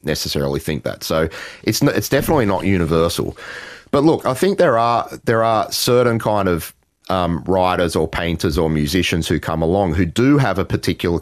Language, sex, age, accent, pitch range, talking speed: English, male, 30-49, Australian, 80-100 Hz, 180 wpm